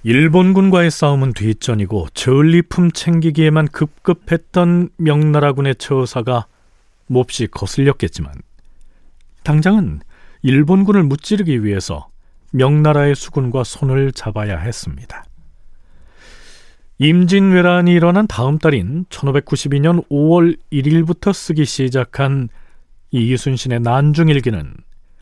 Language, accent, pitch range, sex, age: Korean, native, 120-160 Hz, male, 40-59